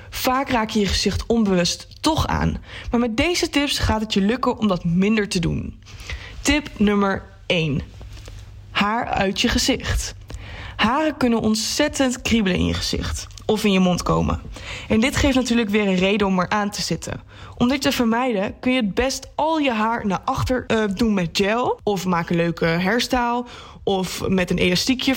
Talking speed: 185 wpm